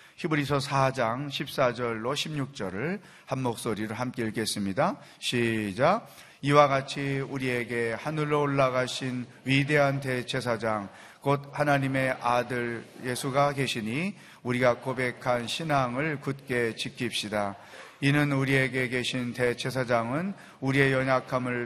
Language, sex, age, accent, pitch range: Korean, male, 30-49, native, 120-140 Hz